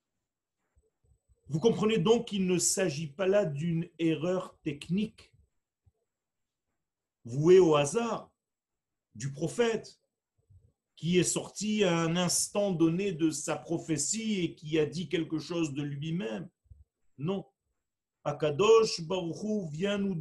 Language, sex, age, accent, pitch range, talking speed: French, male, 50-69, French, 135-195 Hz, 120 wpm